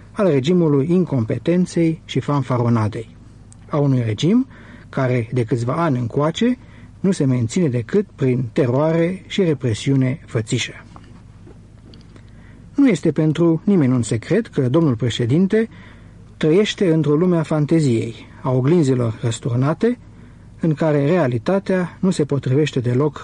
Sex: male